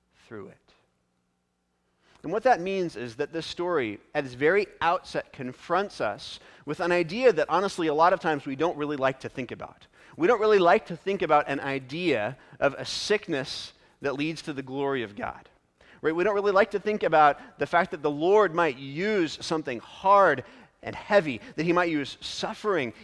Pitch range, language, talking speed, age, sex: 130-185 Hz, English, 190 wpm, 40-59, male